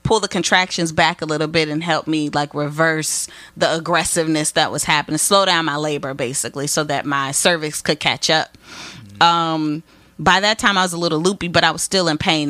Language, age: English, 30-49